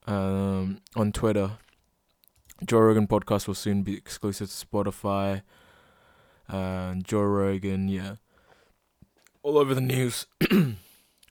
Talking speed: 105 wpm